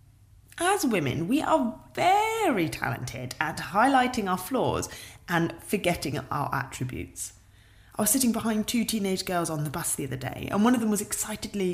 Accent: British